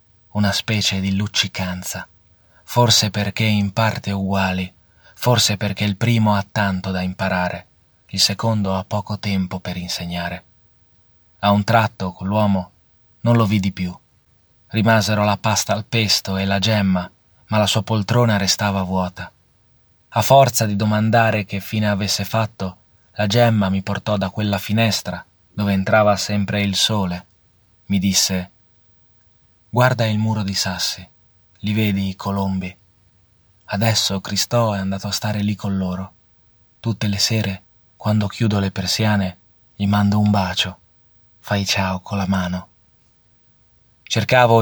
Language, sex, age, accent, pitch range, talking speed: Italian, male, 30-49, native, 95-105 Hz, 140 wpm